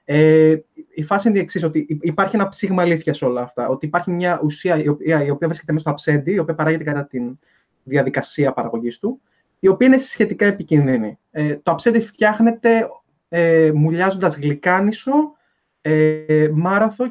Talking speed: 165 wpm